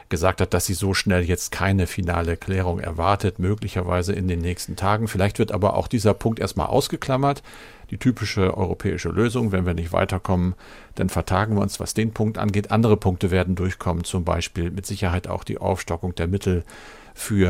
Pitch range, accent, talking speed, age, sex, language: 90-105 Hz, German, 185 wpm, 50-69, male, German